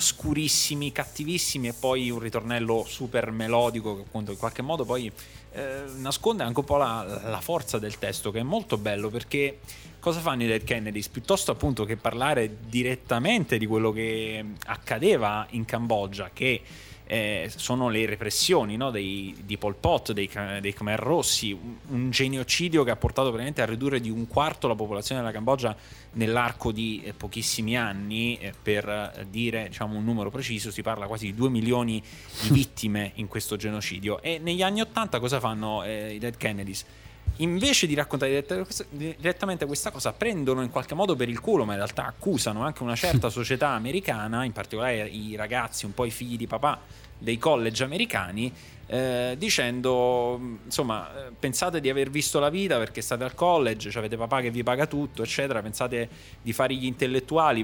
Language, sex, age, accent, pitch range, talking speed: Italian, male, 20-39, native, 110-135 Hz, 175 wpm